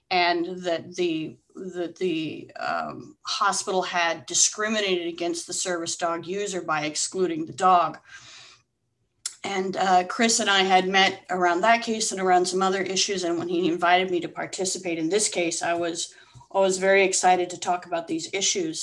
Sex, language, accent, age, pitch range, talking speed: female, English, American, 30-49, 180-235 Hz, 170 wpm